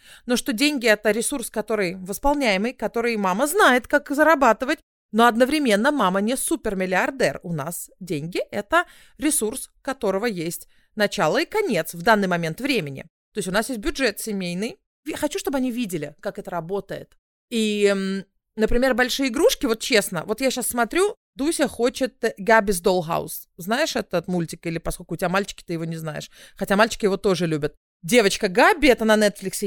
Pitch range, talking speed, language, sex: 190-270 Hz, 170 wpm, Russian, female